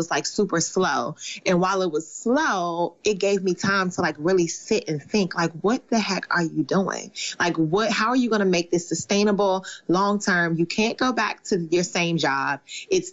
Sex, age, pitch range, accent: female, 30-49, 170-205 Hz, American